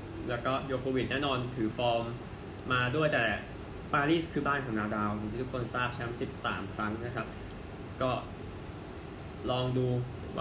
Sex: male